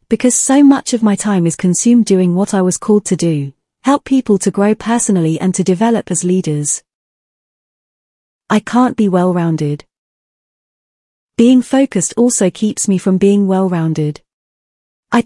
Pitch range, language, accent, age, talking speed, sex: 175-230 Hz, English, British, 30-49, 150 wpm, female